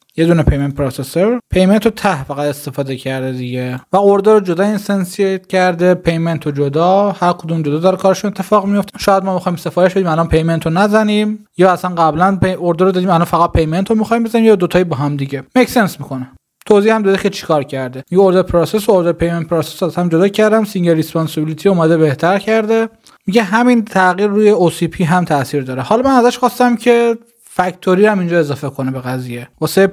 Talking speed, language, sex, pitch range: 190 wpm, Persian, male, 160-200 Hz